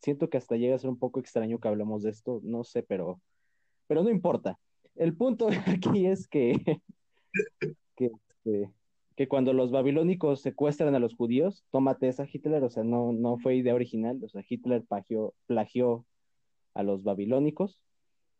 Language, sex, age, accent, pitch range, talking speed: Spanish, male, 30-49, Mexican, 120-155 Hz, 165 wpm